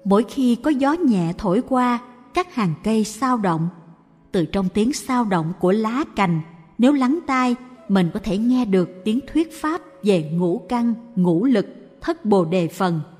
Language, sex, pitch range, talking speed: Vietnamese, female, 185-255 Hz, 180 wpm